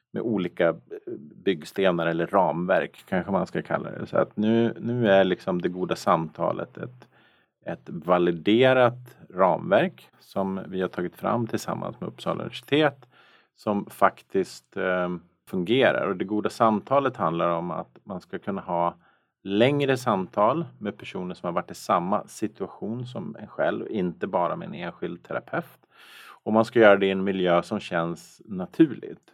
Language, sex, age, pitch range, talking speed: Swedish, male, 40-59, 90-120 Hz, 160 wpm